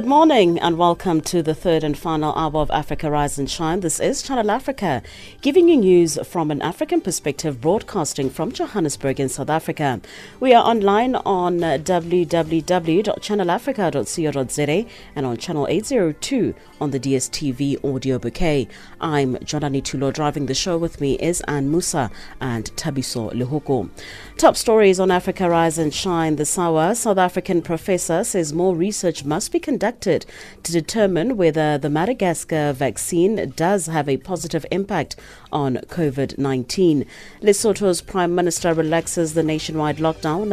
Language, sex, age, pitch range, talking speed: English, female, 40-59, 140-185 Hz, 145 wpm